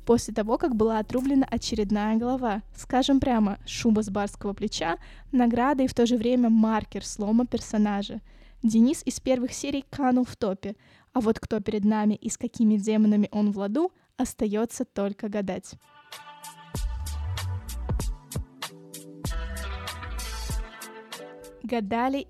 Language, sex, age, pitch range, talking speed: Russian, female, 20-39, 215-260 Hz, 120 wpm